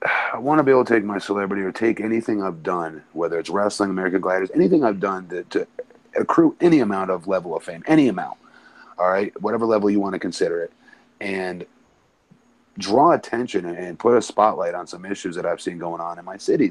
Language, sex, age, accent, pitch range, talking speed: English, male, 30-49, American, 95-115 Hz, 215 wpm